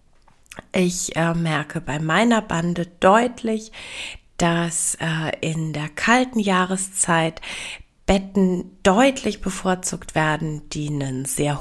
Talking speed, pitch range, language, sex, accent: 105 wpm, 165-205 Hz, German, female, German